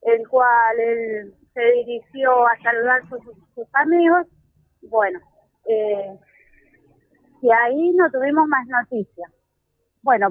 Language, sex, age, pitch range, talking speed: Spanish, female, 30-49, 225-295 Hz, 115 wpm